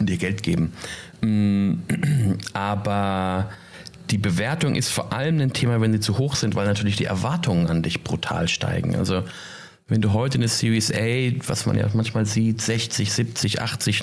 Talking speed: 165 wpm